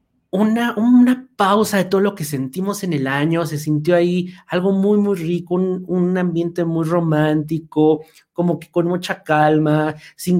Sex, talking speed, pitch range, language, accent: male, 165 wpm, 145-180 Hz, Spanish, Mexican